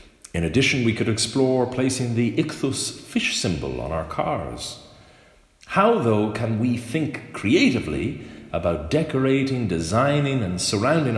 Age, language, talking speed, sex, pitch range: 40-59, English, 130 wpm, male, 80-120 Hz